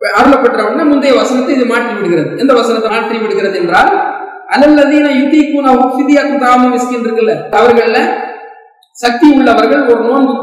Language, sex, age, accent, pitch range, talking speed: English, male, 40-59, Indian, 230-280 Hz, 145 wpm